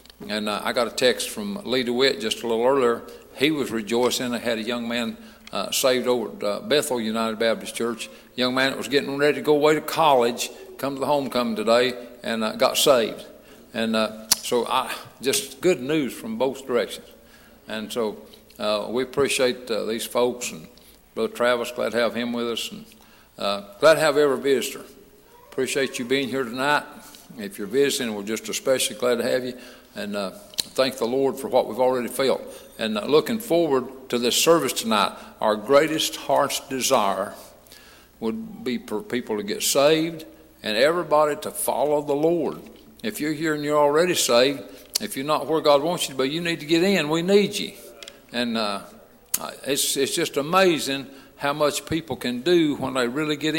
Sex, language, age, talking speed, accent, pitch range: male, English, 60-79, 190 wpm, American, 120-150 Hz